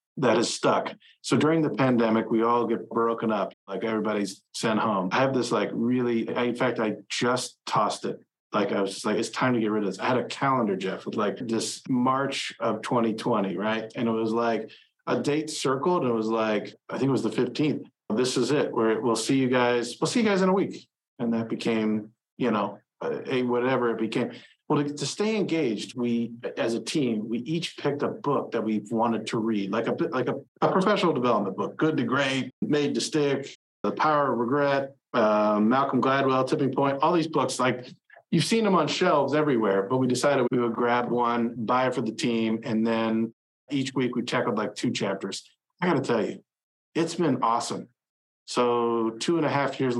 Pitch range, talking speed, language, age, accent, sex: 115-135 Hz, 220 wpm, English, 40-59, American, male